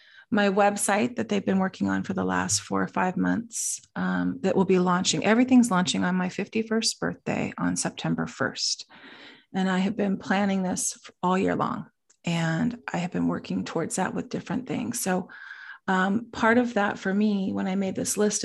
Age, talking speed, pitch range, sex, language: 30-49, 190 wpm, 180-225 Hz, female, English